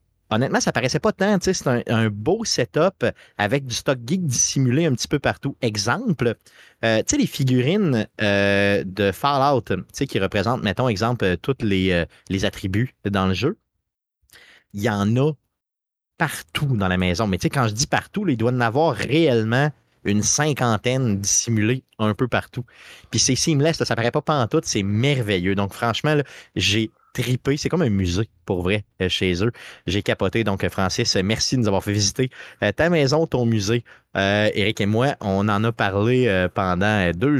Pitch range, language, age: 100-130 Hz, French, 30-49